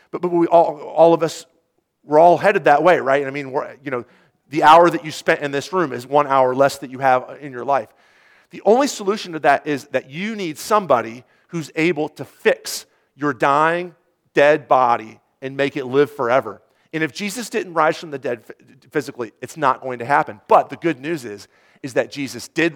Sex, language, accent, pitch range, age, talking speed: male, English, American, 130-170 Hz, 40-59, 215 wpm